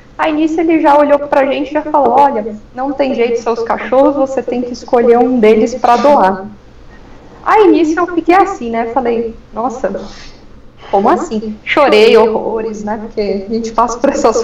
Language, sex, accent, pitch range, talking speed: Portuguese, female, Brazilian, 210-285 Hz, 185 wpm